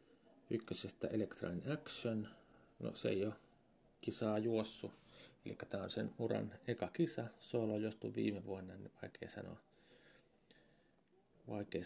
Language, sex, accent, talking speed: Finnish, male, native, 120 wpm